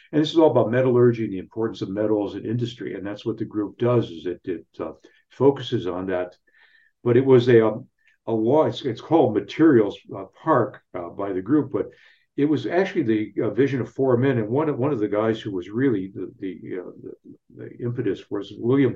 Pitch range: 105-130 Hz